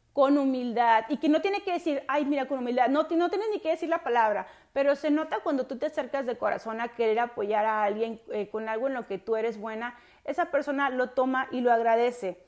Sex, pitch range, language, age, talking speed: female, 225-275 Hz, Spanish, 30-49, 240 wpm